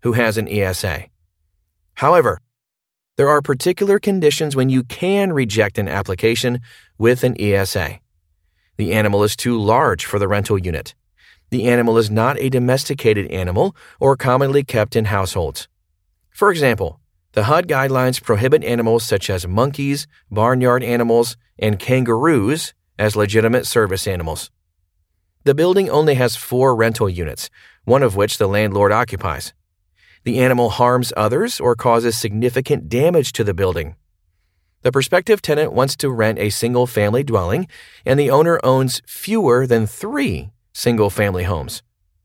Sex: male